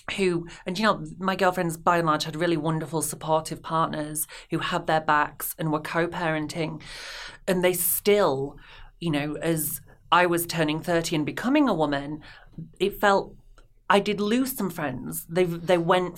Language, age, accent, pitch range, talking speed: English, 30-49, British, 150-185 Hz, 165 wpm